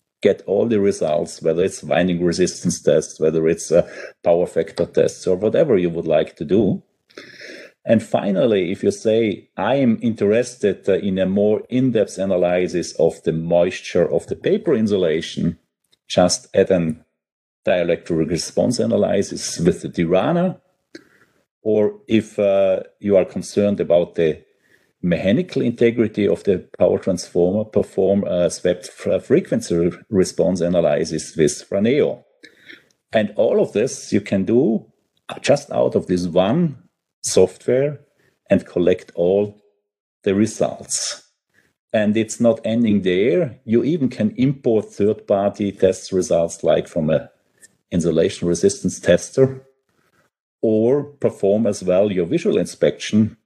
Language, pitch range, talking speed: English, 90-115 Hz, 130 wpm